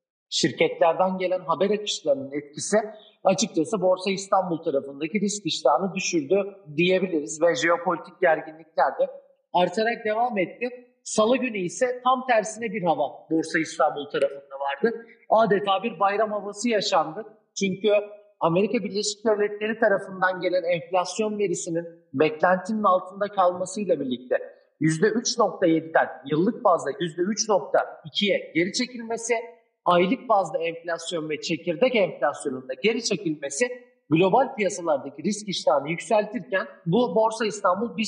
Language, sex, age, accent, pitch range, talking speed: Turkish, male, 40-59, native, 175-225 Hz, 110 wpm